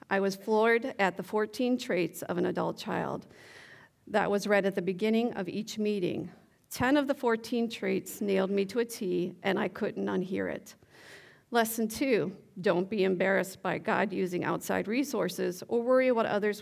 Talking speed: 175 wpm